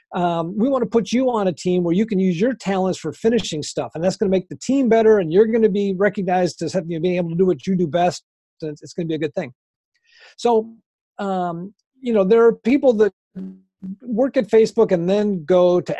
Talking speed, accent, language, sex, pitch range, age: 235 wpm, American, English, male, 180-225 Hz, 50-69